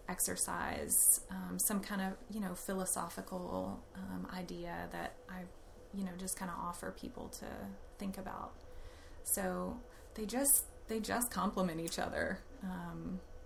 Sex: female